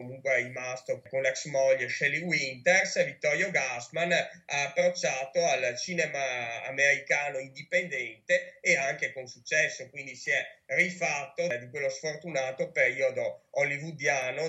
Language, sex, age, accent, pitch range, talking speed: Italian, male, 30-49, native, 135-175 Hz, 120 wpm